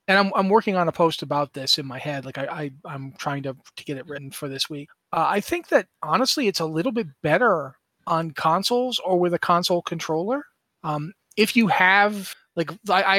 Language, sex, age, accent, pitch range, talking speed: English, male, 30-49, American, 145-180 Hz, 220 wpm